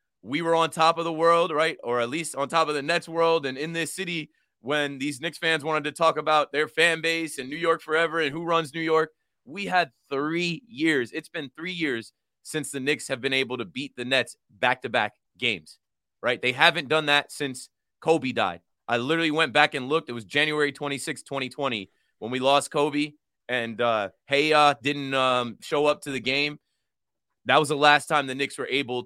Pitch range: 130-165 Hz